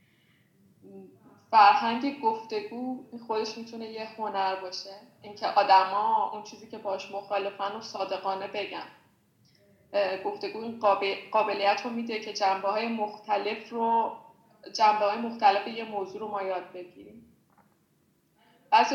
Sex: female